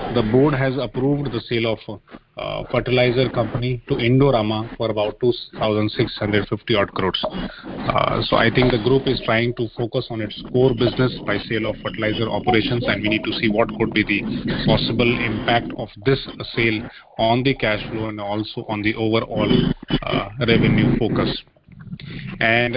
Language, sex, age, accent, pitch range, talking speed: English, male, 30-49, Indian, 110-125 Hz, 165 wpm